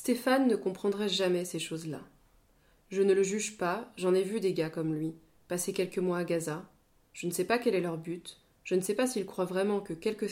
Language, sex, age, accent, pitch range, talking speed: French, female, 20-39, French, 165-195 Hz, 235 wpm